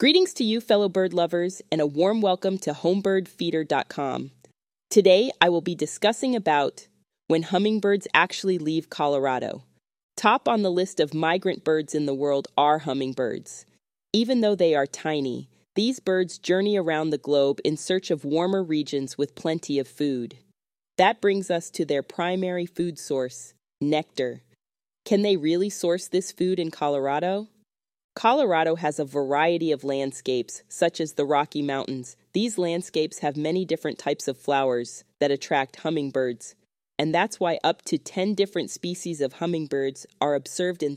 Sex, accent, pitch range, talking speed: female, American, 145-195 Hz, 155 wpm